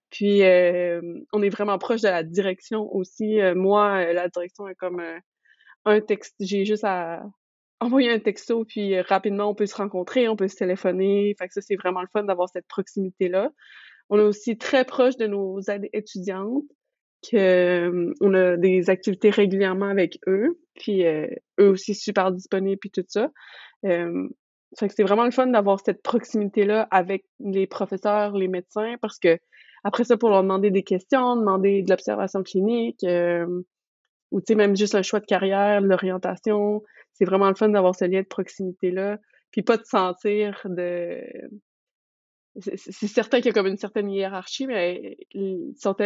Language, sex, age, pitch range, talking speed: French, female, 20-39, 185-210 Hz, 175 wpm